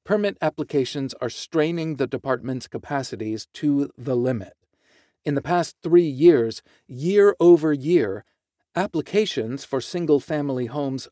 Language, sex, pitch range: English, male, 125-170 Hz